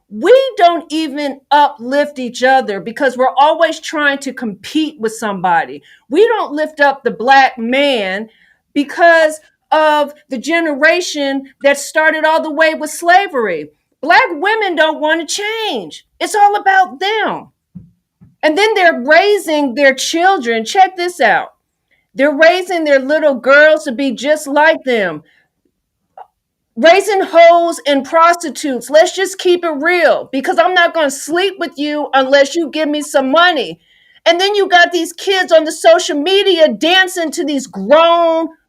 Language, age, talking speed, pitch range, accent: English, 50-69, 150 wpm, 280-345 Hz, American